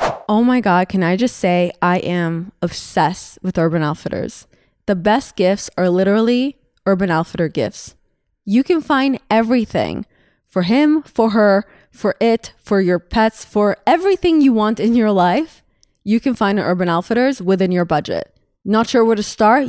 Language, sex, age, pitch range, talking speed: English, female, 20-39, 185-240 Hz, 170 wpm